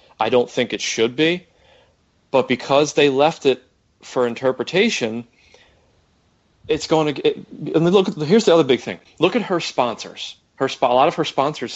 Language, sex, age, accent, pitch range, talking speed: English, male, 30-49, American, 115-155 Hz, 175 wpm